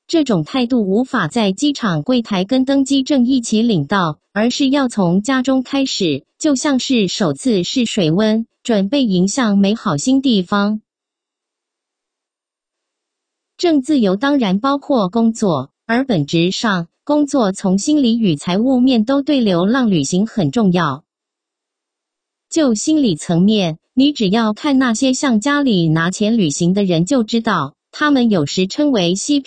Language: English